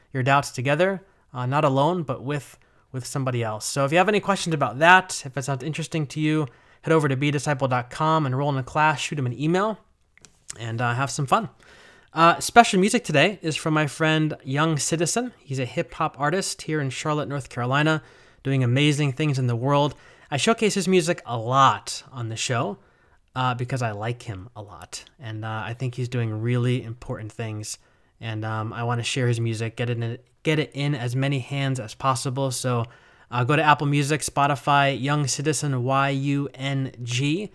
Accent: American